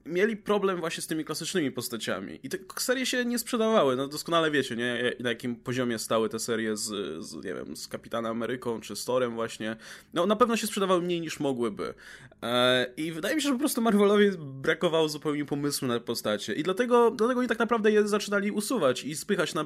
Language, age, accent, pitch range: Polish, 20-39, native, 140-210 Hz